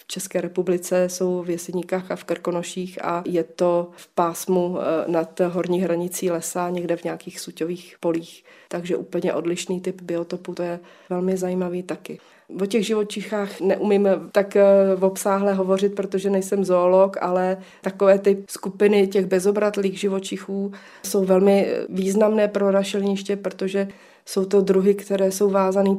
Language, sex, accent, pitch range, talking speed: Czech, female, native, 175-195 Hz, 140 wpm